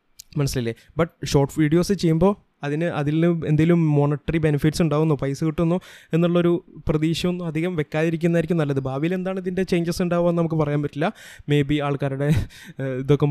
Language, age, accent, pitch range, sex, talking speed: Malayalam, 20-39, native, 140-170 Hz, male, 135 wpm